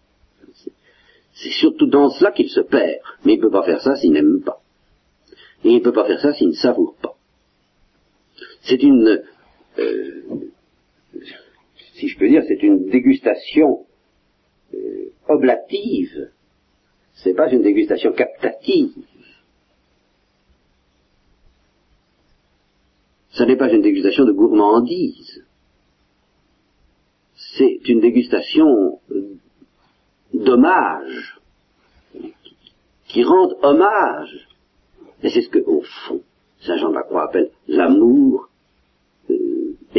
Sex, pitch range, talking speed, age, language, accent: male, 310-375 Hz, 110 wpm, 50-69, French, French